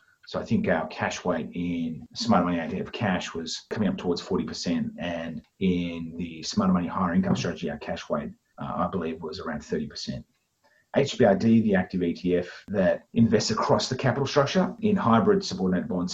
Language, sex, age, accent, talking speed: English, male, 40-59, Australian, 175 wpm